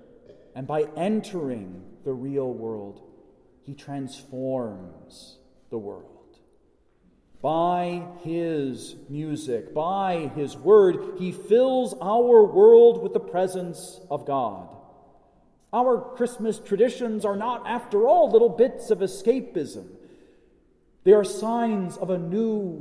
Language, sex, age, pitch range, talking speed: English, male, 40-59, 140-210 Hz, 110 wpm